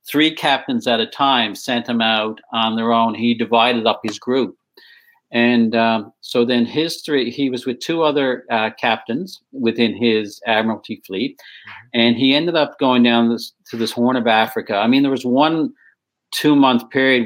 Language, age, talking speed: English, 50-69, 175 wpm